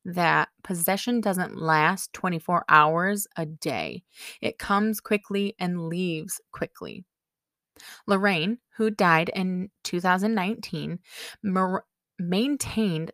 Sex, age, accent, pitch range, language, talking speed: female, 20-39, American, 170-215 Hz, English, 95 wpm